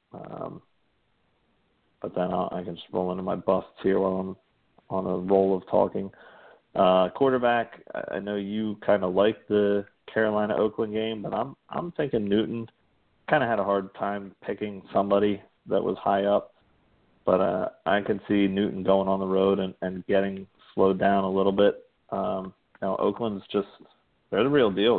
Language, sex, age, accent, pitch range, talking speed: English, male, 40-59, American, 95-100 Hz, 180 wpm